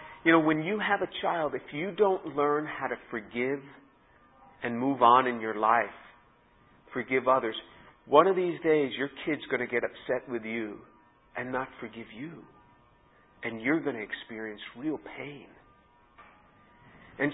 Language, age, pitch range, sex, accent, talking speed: English, 50-69, 120-170 Hz, male, American, 160 wpm